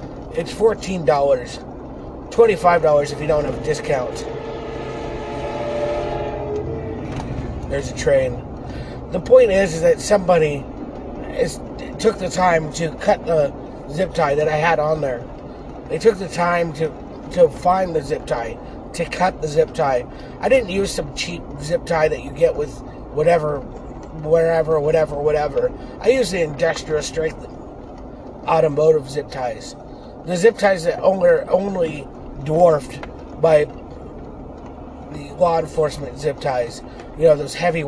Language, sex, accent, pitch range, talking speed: English, male, American, 135-180 Hz, 135 wpm